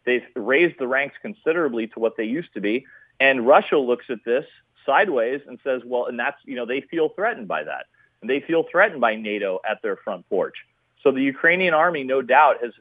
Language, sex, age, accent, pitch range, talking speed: English, male, 40-59, American, 125-170 Hz, 215 wpm